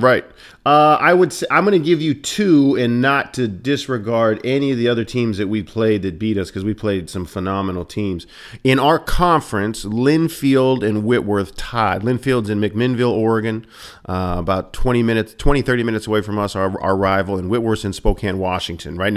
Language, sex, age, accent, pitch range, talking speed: English, male, 40-59, American, 100-125 Hz, 195 wpm